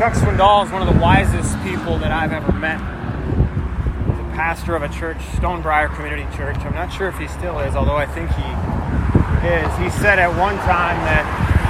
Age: 30-49